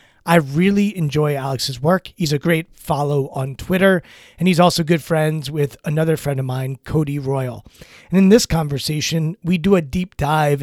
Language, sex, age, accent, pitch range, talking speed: English, male, 30-49, American, 140-175 Hz, 180 wpm